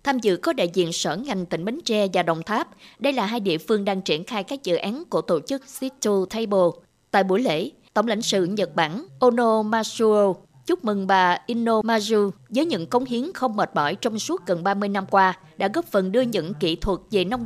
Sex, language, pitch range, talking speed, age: female, Vietnamese, 180-235 Hz, 225 wpm, 20-39